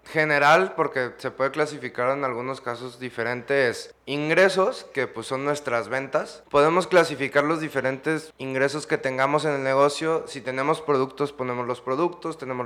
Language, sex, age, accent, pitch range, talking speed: Spanish, male, 20-39, Mexican, 135-180 Hz, 150 wpm